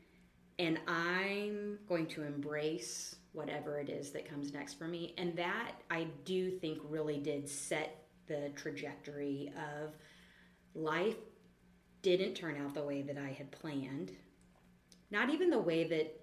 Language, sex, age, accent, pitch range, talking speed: English, female, 30-49, American, 145-175 Hz, 145 wpm